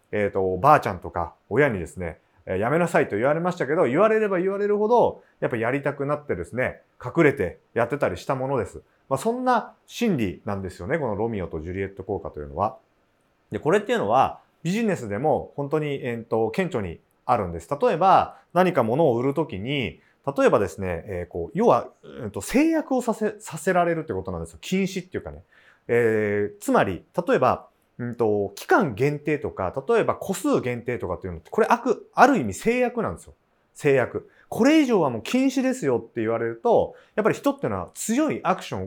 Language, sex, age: Japanese, male, 30-49